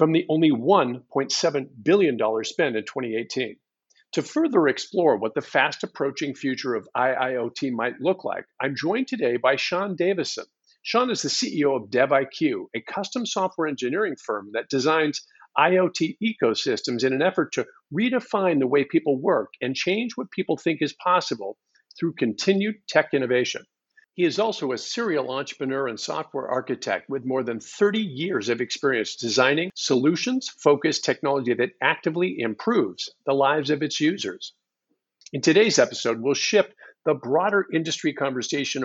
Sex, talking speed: male, 155 wpm